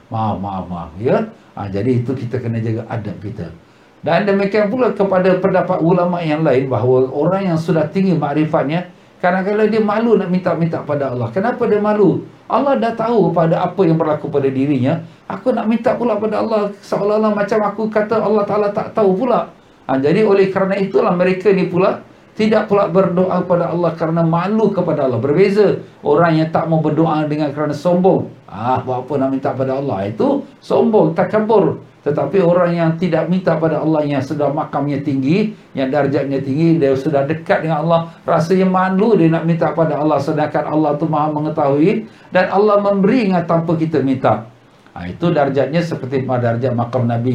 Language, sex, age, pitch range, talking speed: Malay, male, 50-69, 140-195 Hz, 180 wpm